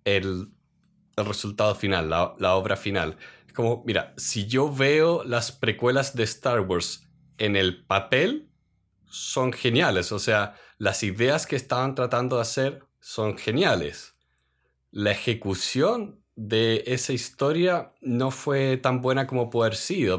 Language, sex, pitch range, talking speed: Spanish, male, 105-155 Hz, 145 wpm